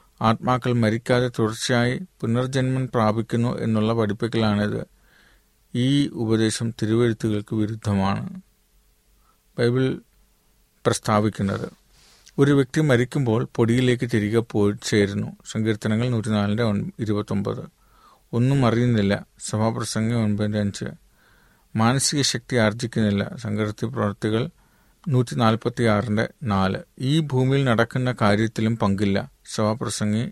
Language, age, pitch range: Malayalam, 40-59, 105-125 Hz